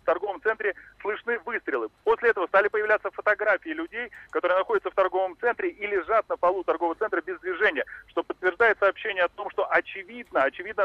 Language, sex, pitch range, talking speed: Russian, male, 170-230 Hz, 175 wpm